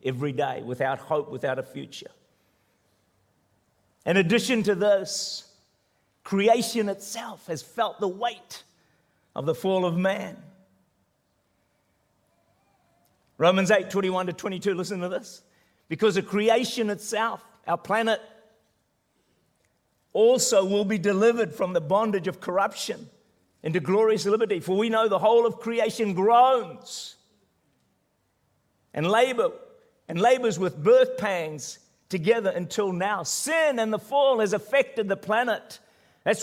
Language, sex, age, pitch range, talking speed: English, male, 50-69, 180-230 Hz, 125 wpm